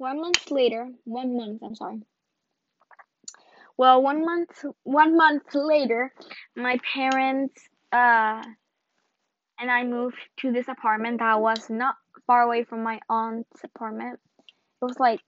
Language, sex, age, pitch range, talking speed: English, female, 10-29, 230-280 Hz, 135 wpm